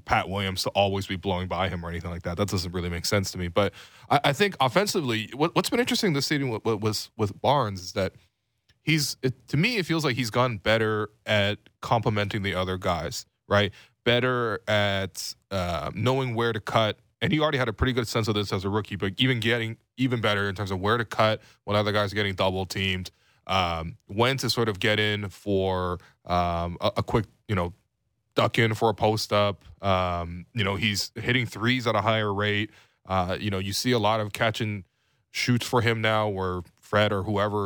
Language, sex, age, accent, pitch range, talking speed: English, male, 20-39, American, 100-120 Hz, 220 wpm